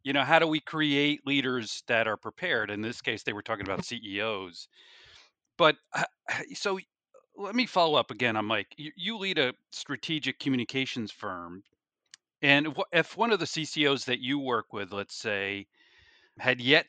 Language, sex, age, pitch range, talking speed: English, male, 40-59, 110-145 Hz, 165 wpm